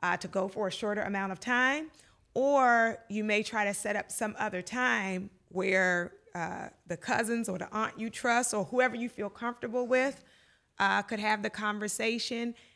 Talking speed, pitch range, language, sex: 185 wpm, 185-225 Hz, English, female